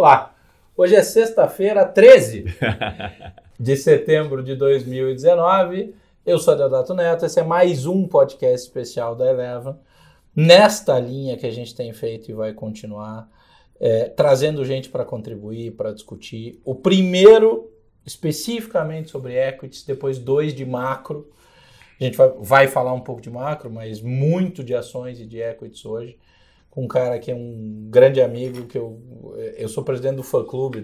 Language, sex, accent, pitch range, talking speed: Portuguese, male, Brazilian, 115-145 Hz, 155 wpm